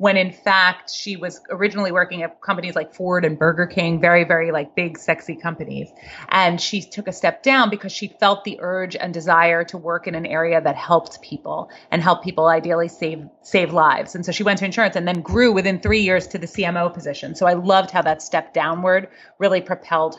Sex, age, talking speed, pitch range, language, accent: female, 30-49, 215 wpm, 165-200 Hz, English, American